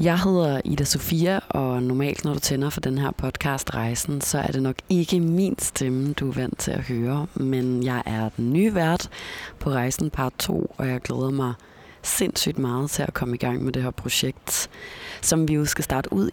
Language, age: Danish, 30-49